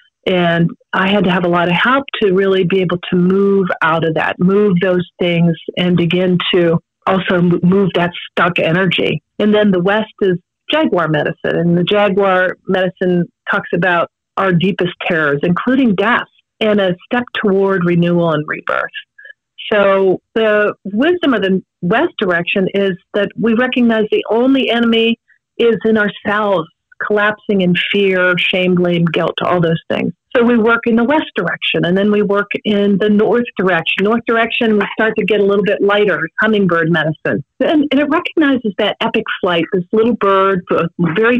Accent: American